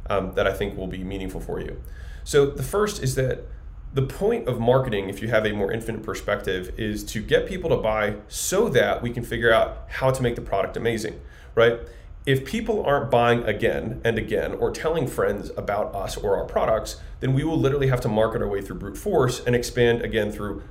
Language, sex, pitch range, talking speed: English, male, 110-135 Hz, 215 wpm